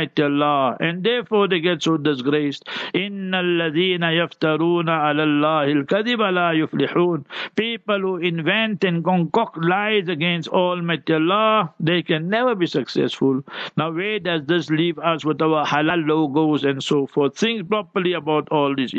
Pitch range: 160-195 Hz